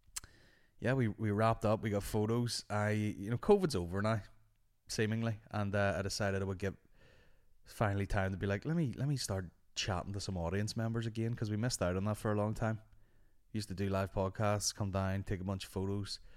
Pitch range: 95-110 Hz